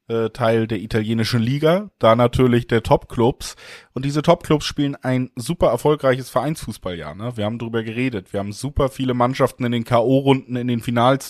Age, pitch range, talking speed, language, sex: 20-39, 115-135 Hz, 165 wpm, German, male